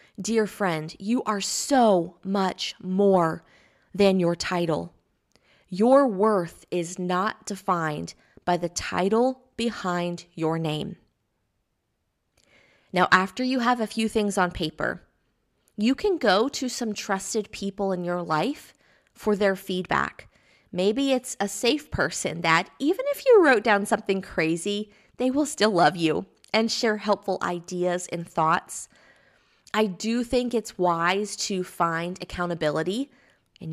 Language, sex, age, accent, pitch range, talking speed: English, female, 20-39, American, 175-225 Hz, 135 wpm